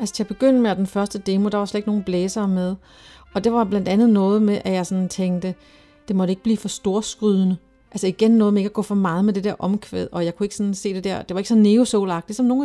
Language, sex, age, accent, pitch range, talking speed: Danish, female, 40-59, native, 190-230 Hz, 285 wpm